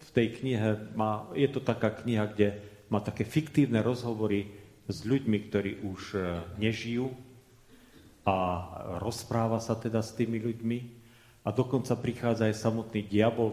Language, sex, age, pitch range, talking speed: Slovak, male, 40-59, 105-125 Hz, 135 wpm